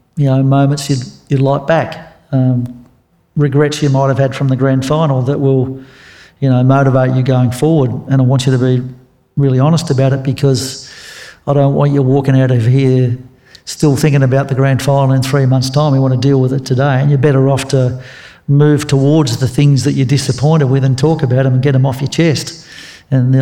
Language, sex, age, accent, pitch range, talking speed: English, male, 50-69, Australian, 130-150 Hz, 220 wpm